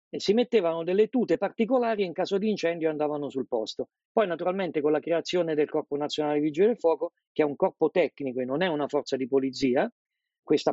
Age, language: 50-69, Italian